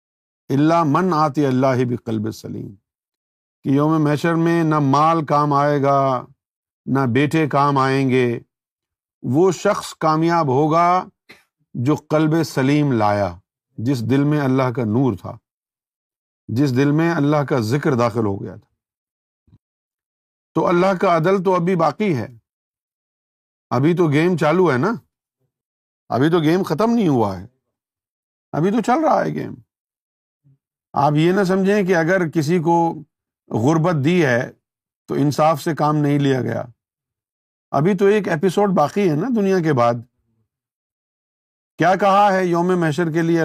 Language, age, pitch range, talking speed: Urdu, 50-69, 125-170 Hz, 150 wpm